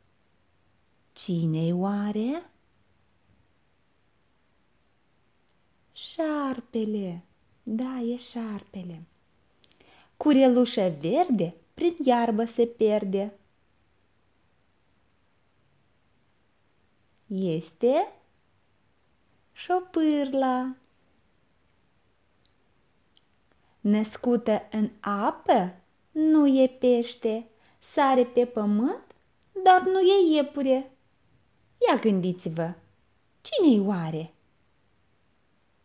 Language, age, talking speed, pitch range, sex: Romanian, 20-39, 50 wpm, 175-285 Hz, female